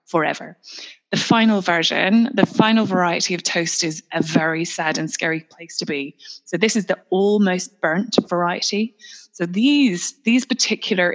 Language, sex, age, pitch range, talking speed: English, female, 20-39, 175-220 Hz, 155 wpm